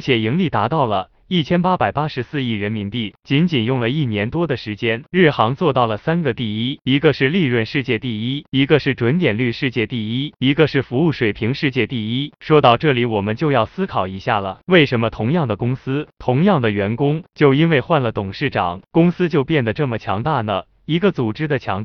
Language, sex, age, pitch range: Chinese, male, 20-39, 110-150 Hz